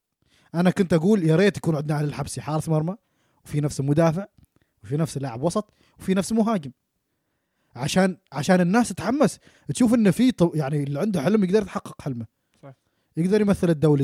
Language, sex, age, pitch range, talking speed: Arabic, male, 20-39, 145-195 Hz, 160 wpm